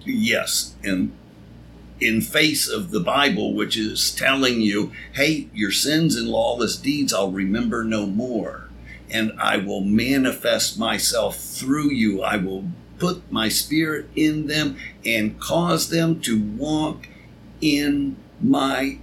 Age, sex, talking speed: 60-79, male, 135 wpm